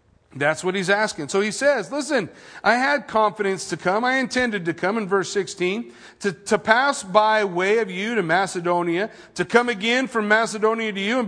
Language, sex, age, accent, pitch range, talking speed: English, male, 40-59, American, 195-235 Hz, 195 wpm